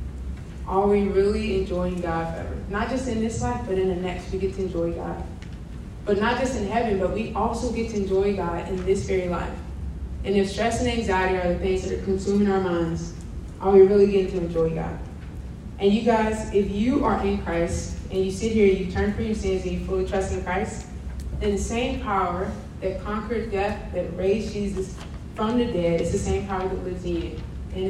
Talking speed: 220 wpm